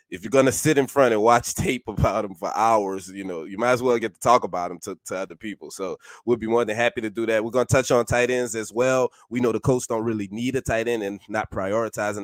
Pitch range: 95-120 Hz